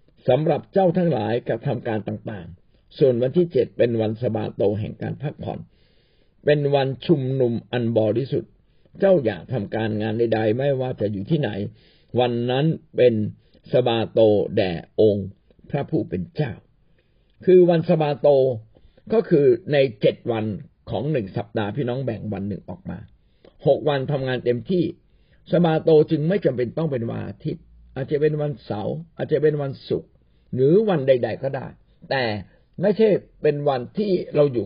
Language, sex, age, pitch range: Thai, male, 60-79, 115-160 Hz